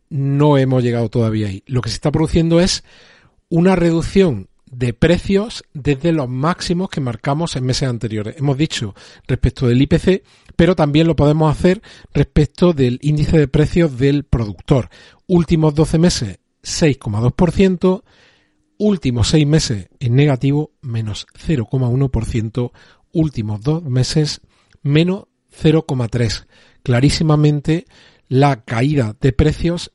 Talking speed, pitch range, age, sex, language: 120 wpm, 125-160 Hz, 40-59, male, Spanish